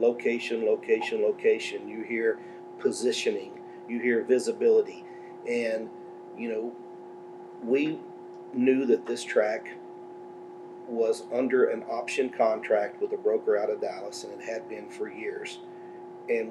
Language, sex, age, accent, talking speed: English, male, 40-59, American, 125 wpm